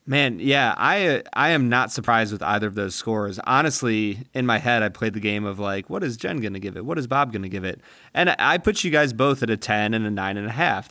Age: 30-49